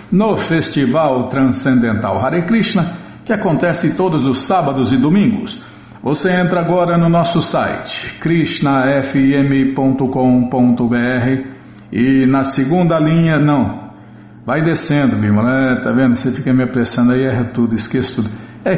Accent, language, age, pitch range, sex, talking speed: Brazilian, Portuguese, 50-69, 125-170 Hz, male, 125 wpm